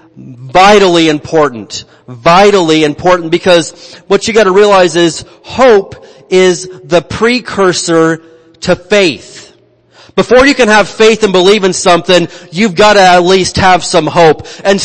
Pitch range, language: 170-215 Hz, English